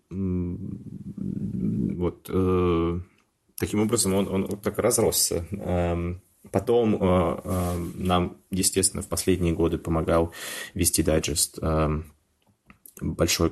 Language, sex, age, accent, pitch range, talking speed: Russian, male, 20-39, native, 85-95 Hz, 75 wpm